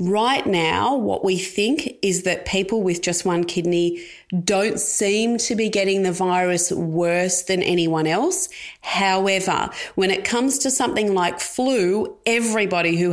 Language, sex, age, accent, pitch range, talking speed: English, female, 30-49, Australian, 170-205 Hz, 150 wpm